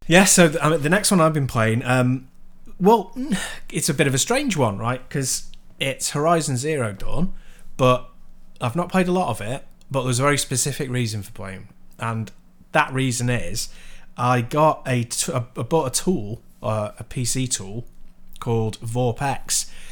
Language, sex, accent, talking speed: English, male, British, 170 wpm